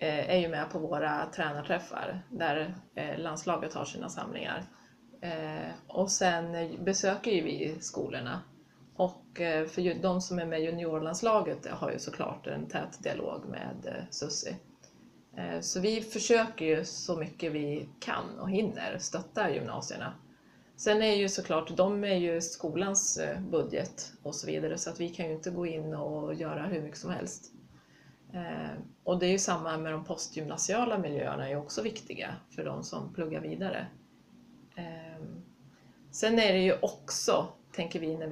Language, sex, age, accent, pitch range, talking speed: Swedish, female, 20-39, native, 155-185 Hz, 150 wpm